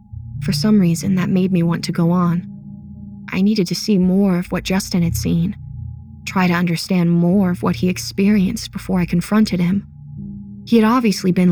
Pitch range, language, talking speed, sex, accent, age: 145-195 Hz, English, 190 wpm, female, American, 20-39